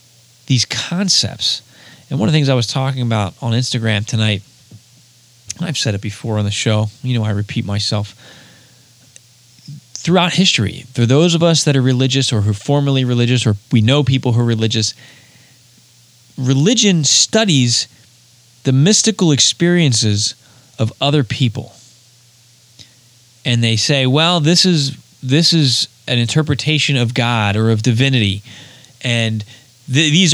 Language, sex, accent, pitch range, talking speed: English, male, American, 115-145 Hz, 140 wpm